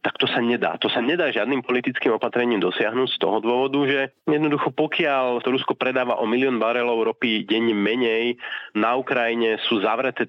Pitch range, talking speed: 120-150 Hz, 170 wpm